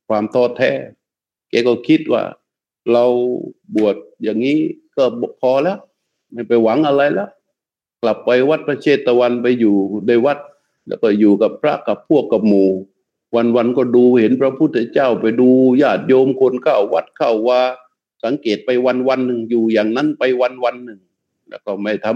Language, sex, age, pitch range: Thai, male, 60-79, 110-135 Hz